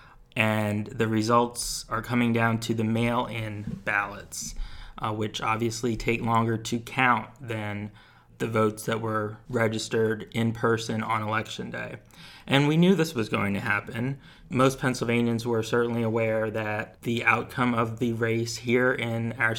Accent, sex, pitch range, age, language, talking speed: American, male, 110-125 Hz, 30-49, English, 155 wpm